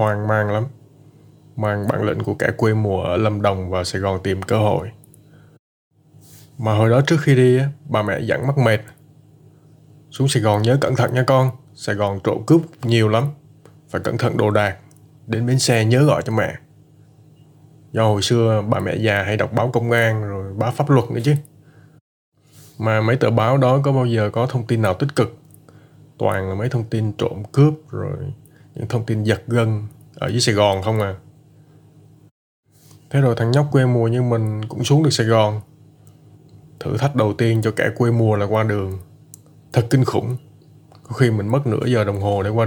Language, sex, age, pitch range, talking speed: Vietnamese, male, 20-39, 110-145 Hz, 200 wpm